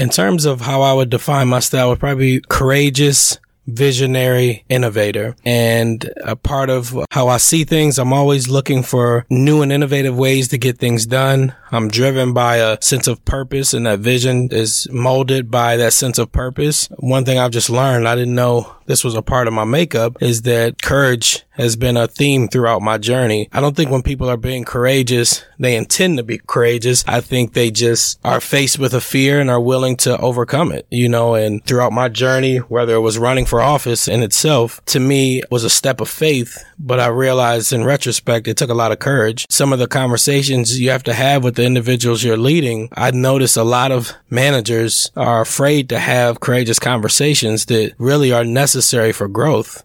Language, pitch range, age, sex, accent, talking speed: English, 115-135 Hz, 20-39, male, American, 205 wpm